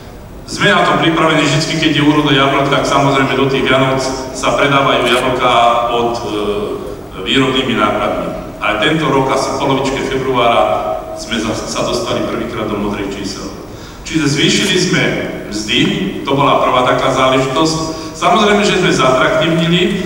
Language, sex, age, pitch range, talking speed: Slovak, male, 40-59, 130-170 Hz, 145 wpm